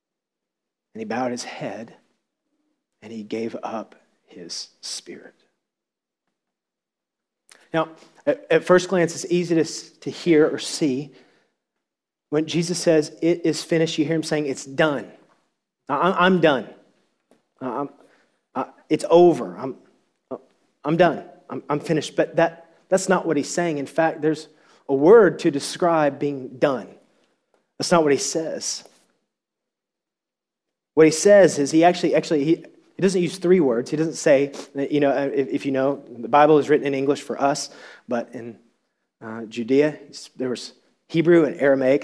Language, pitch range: English, 135-165 Hz